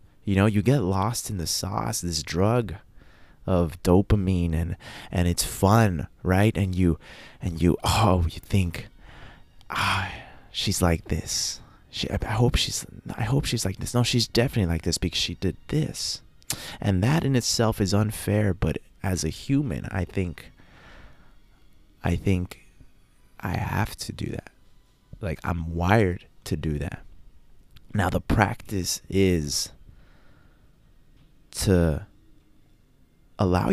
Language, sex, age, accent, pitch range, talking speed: English, male, 20-39, American, 85-105 Hz, 135 wpm